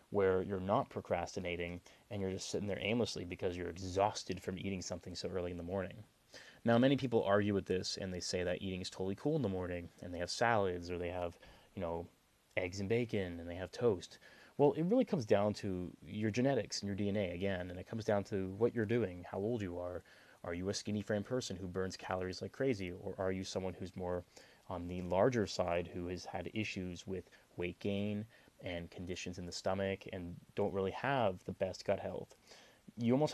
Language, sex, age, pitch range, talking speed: English, male, 20-39, 90-110 Hz, 220 wpm